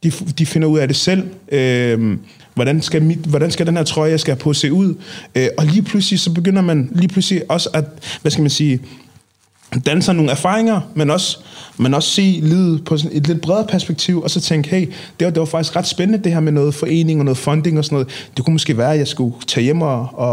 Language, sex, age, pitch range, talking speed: Danish, male, 20-39, 135-170 Hz, 250 wpm